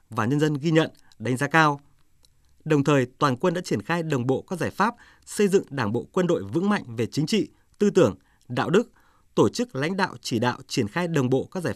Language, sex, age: Vietnamese, male, 20-39